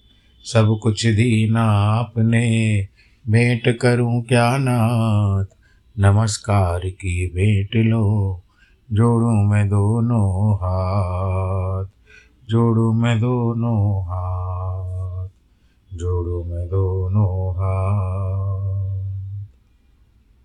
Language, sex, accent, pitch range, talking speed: Hindi, male, native, 95-115 Hz, 70 wpm